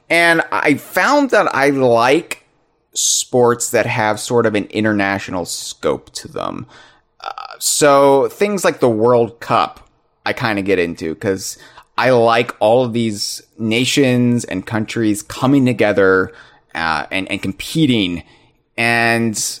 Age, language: 30-49, English